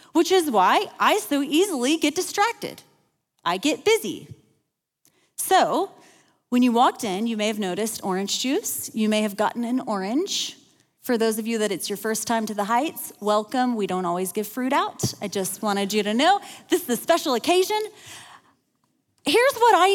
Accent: American